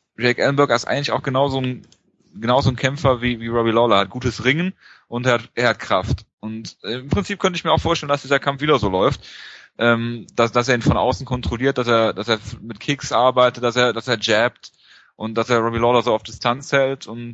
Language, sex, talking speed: German, male, 235 wpm